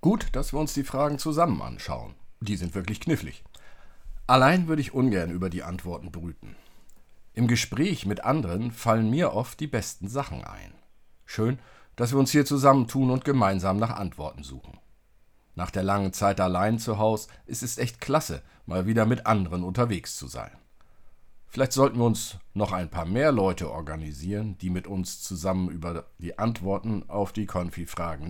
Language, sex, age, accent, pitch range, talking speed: German, male, 50-69, German, 90-125 Hz, 170 wpm